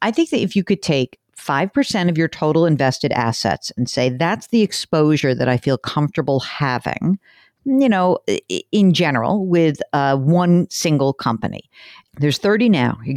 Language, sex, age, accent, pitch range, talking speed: English, female, 50-69, American, 145-205 Hz, 165 wpm